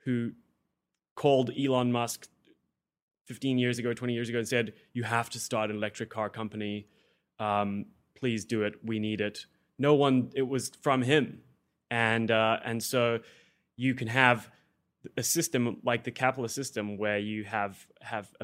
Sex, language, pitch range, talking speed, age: male, English, 110-130 Hz, 165 wpm, 20-39